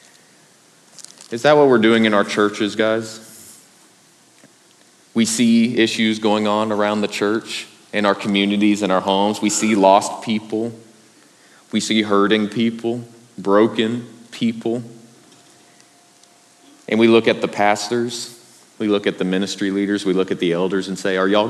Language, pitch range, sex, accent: English, 95-115 Hz, male, American